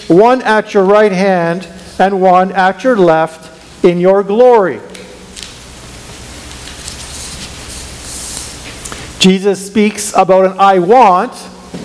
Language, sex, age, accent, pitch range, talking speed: English, male, 50-69, American, 160-200 Hz, 95 wpm